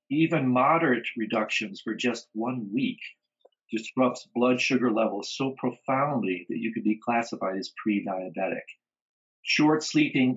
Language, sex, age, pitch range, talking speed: English, male, 50-69, 110-155 Hz, 125 wpm